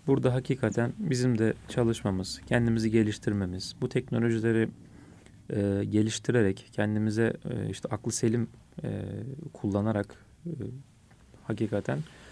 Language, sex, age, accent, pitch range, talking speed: Turkish, male, 40-59, native, 105-125 Hz, 95 wpm